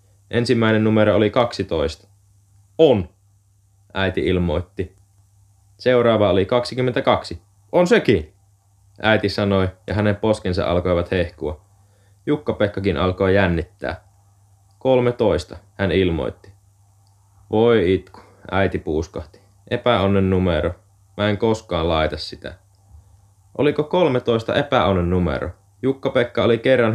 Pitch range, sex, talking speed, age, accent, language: 95-105 Hz, male, 100 wpm, 20-39, native, Finnish